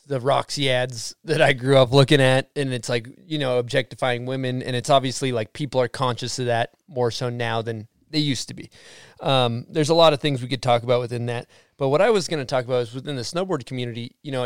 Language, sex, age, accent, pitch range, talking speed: English, male, 20-39, American, 125-150 Hz, 250 wpm